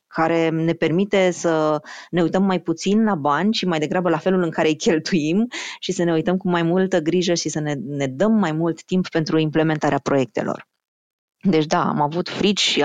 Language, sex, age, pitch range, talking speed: Romanian, female, 20-39, 155-200 Hz, 205 wpm